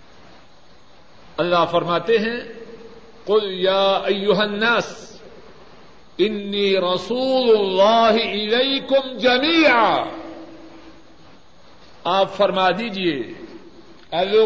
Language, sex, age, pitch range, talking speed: Urdu, male, 50-69, 185-285 Hz, 60 wpm